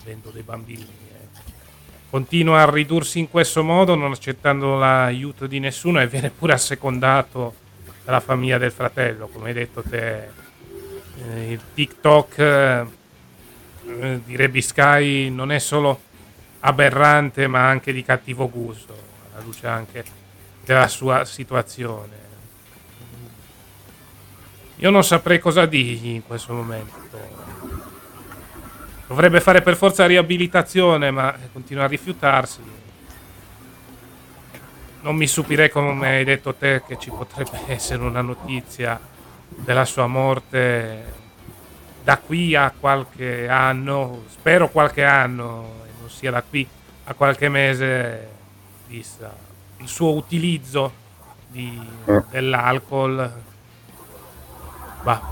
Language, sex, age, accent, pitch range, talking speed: Italian, male, 30-49, native, 110-140 Hz, 110 wpm